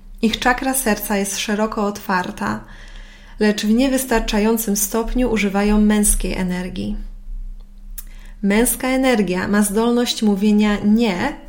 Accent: native